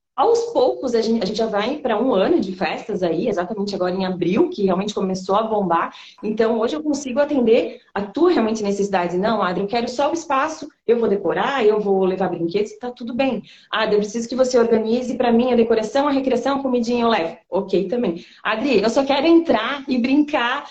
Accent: Brazilian